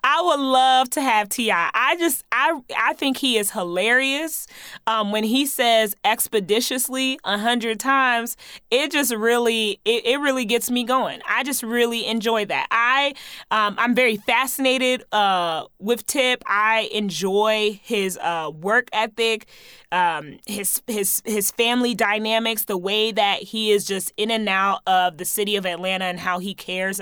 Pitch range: 200-255 Hz